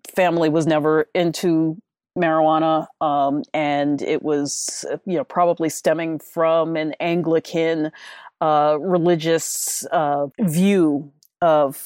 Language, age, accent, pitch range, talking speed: English, 40-59, American, 150-175 Hz, 105 wpm